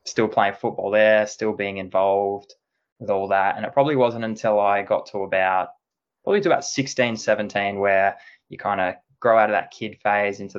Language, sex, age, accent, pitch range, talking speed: English, male, 20-39, Australian, 95-110 Hz, 200 wpm